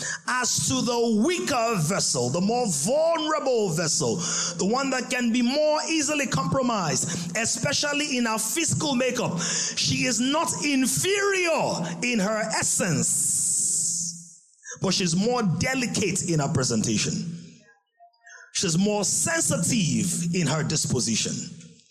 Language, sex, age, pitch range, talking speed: English, male, 30-49, 165-235 Hz, 115 wpm